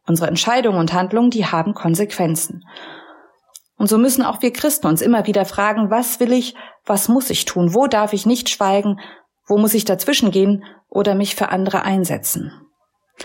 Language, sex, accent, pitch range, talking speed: German, female, German, 190-240 Hz, 175 wpm